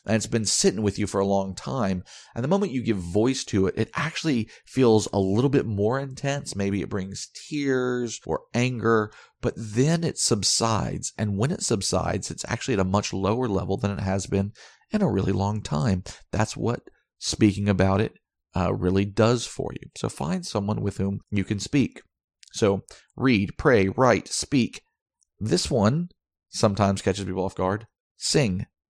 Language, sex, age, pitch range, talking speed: English, male, 40-59, 95-120 Hz, 180 wpm